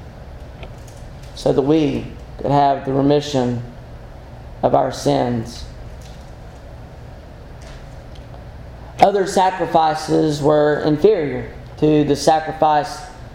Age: 40-59